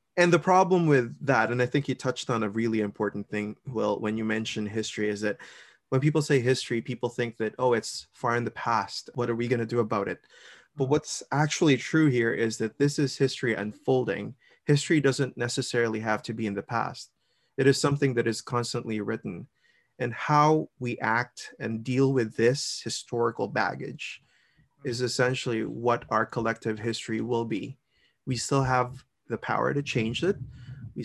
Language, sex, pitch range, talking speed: English, male, 110-135 Hz, 185 wpm